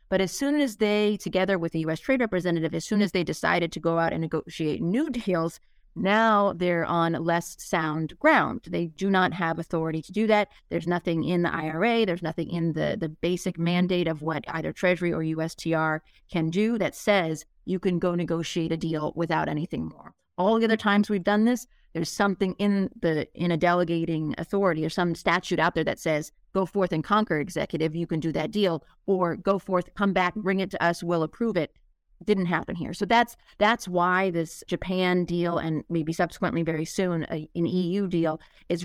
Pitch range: 165-200 Hz